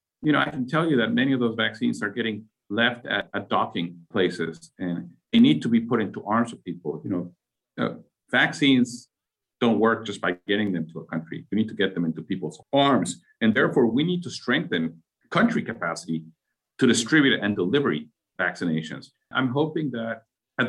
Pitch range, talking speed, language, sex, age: 95-135 Hz, 190 wpm, English, male, 50-69